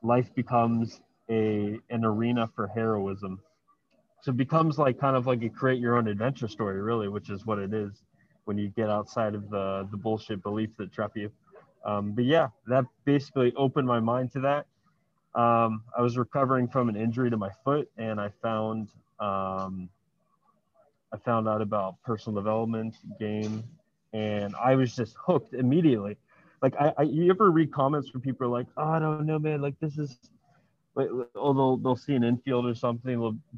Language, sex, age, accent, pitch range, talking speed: English, male, 20-39, American, 110-135 Hz, 185 wpm